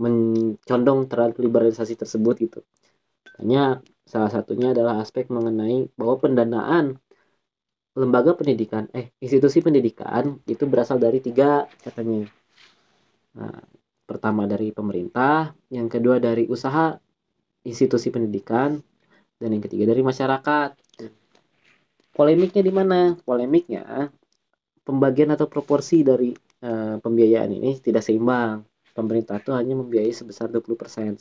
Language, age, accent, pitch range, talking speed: Indonesian, 20-39, native, 115-135 Hz, 110 wpm